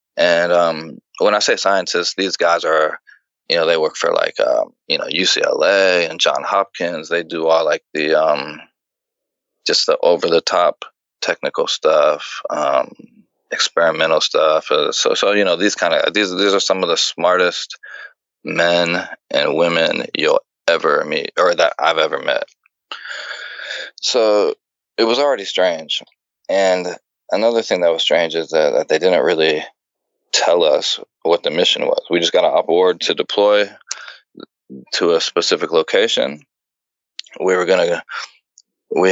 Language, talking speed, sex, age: English, 160 wpm, male, 20-39